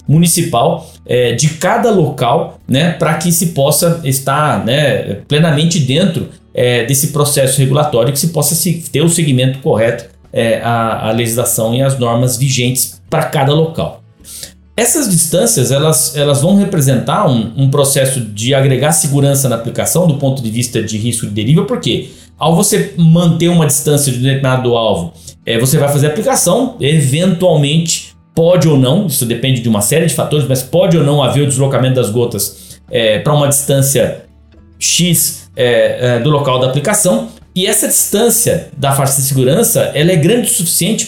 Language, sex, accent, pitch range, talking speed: Portuguese, male, Brazilian, 125-170 Hz, 170 wpm